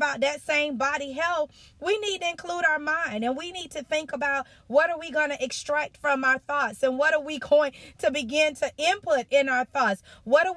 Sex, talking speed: female, 220 wpm